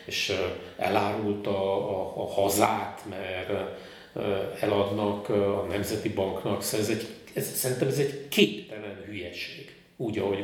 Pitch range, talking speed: 105-130 Hz, 105 wpm